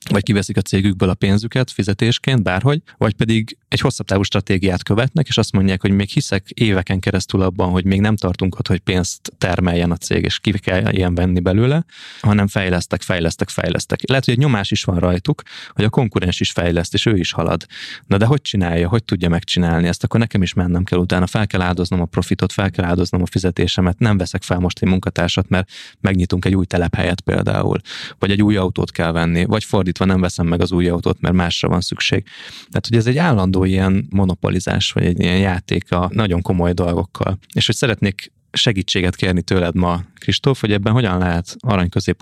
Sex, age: male, 20-39